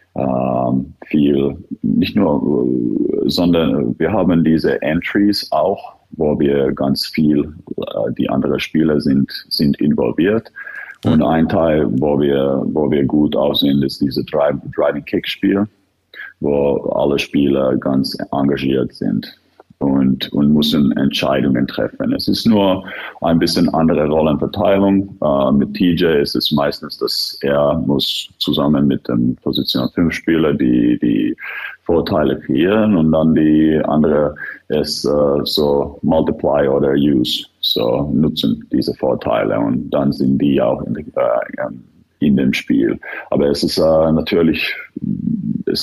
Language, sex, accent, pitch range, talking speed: German, male, German, 70-85 Hz, 135 wpm